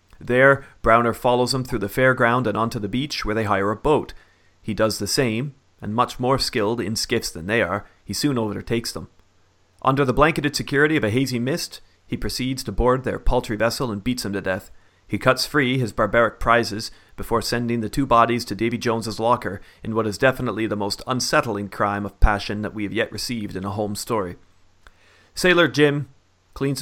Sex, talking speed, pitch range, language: male, 200 wpm, 100-125 Hz, English